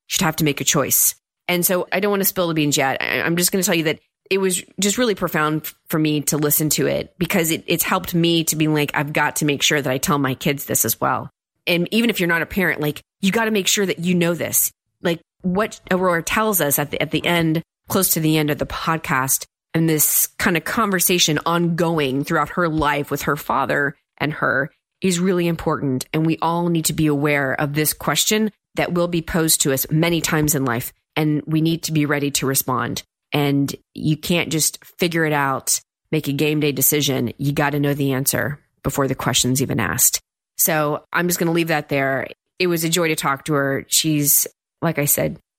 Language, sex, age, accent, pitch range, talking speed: English, female, 30-49, American, 145-175 Hz, 235 wpm